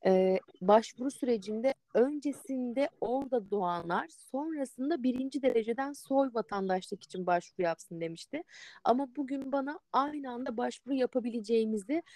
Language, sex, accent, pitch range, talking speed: Turkish, female, native, 215-275 Hz, 110 wpm